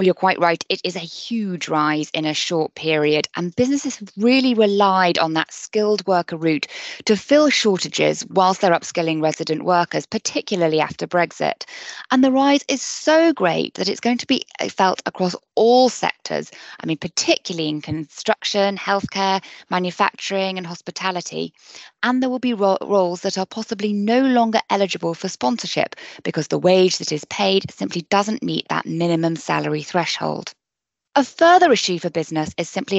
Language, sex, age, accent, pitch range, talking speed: English, female, 20-39, British, 160-205 Hz, 165 wpm